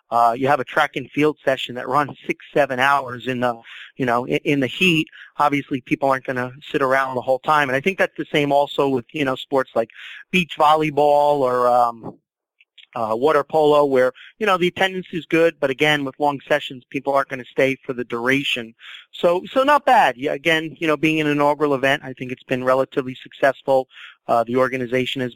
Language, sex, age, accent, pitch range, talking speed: English, male, 30-49, American, 130-160 Hz, 215 wpm